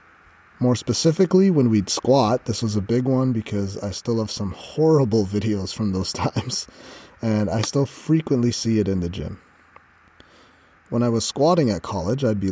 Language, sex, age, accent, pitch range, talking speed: English, male, 30-49, American, 95-120 Hz, 175 wpm